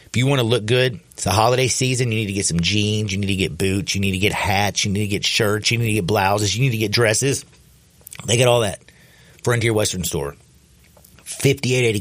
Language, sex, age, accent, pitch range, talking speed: English, male, 50-69, American, 90-115 Hz, 245 wpm